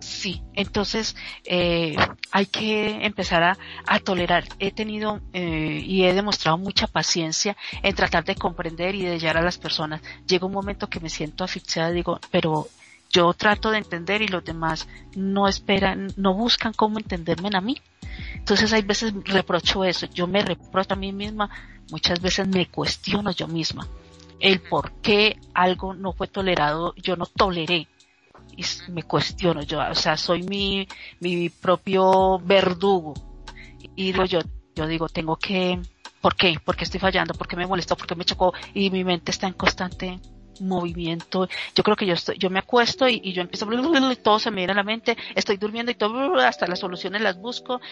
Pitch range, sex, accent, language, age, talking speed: 175-205 Hz, female, Colombian, Spanish, 40-59, 180 wpm